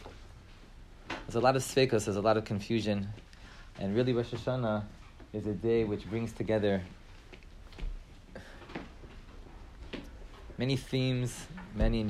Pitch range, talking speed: 90-115 Hz, 120 wpm